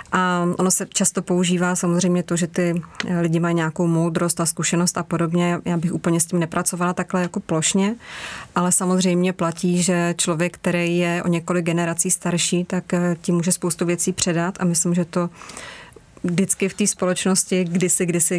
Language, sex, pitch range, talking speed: Slovak, female, 175-185 Hz, 175 wpm